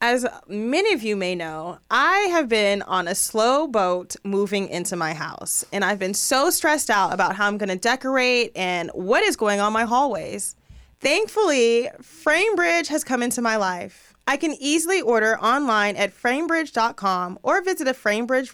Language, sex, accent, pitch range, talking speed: English, female, American, 195-290 Hz, 175 wpm